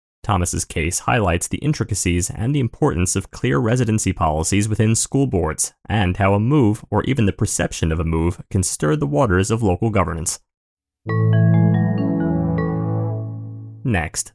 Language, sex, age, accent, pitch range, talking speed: English, male, 30-49, American, 90-125 Hz, 140 wpm